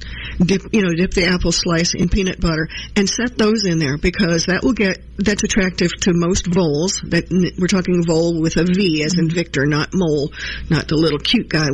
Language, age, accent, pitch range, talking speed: English, 50-69, American, 160-190 Hz, 210 wpm